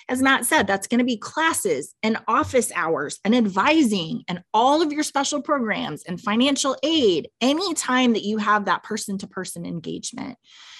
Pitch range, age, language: 180-230 Hz, 20-39, English